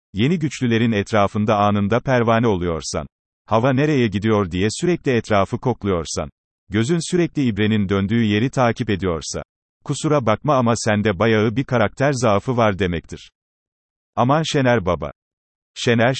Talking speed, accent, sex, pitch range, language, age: 125 wpm, native, male, 100-135 Hz, Turkish, 40-59